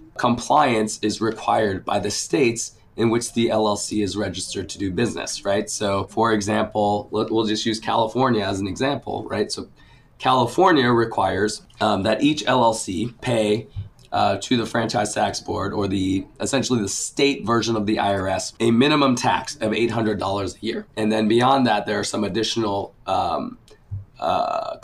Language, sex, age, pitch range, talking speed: English, male, 20-39, 105-125 Hz, 165 wpm